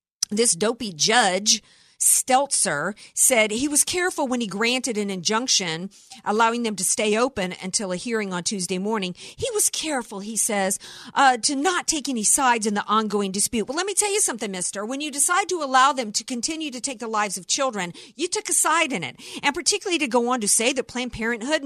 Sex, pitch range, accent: female, 210-300 Hz, American